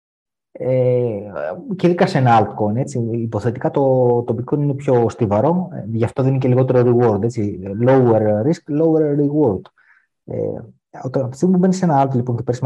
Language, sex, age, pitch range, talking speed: Greek, male, 30-49, 115-160 Hz, 155 wpm